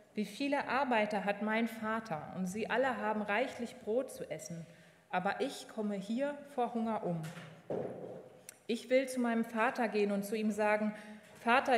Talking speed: 165 wpm